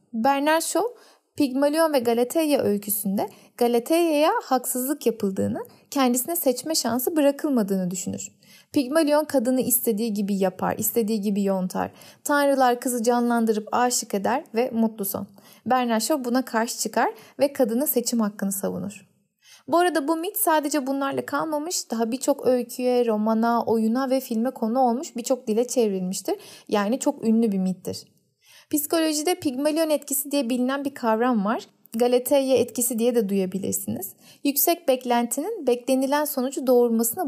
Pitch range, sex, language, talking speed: 220-290 Hz, female, Turkish, 130 wpm